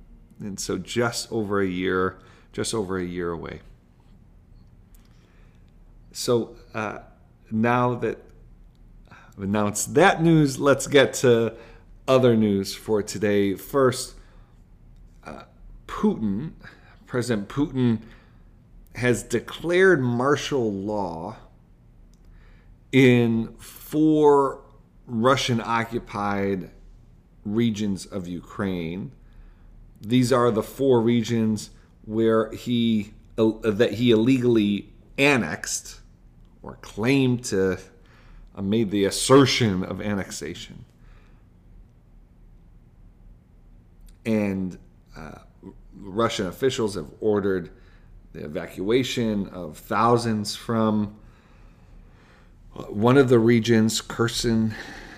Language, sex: English, male